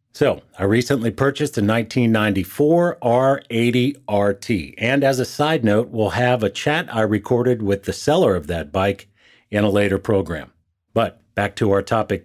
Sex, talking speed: male, 165 wpm